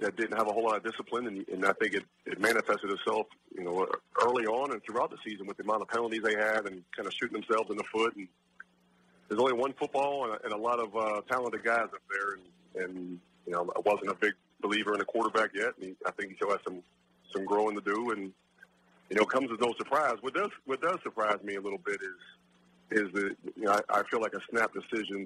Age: 40-59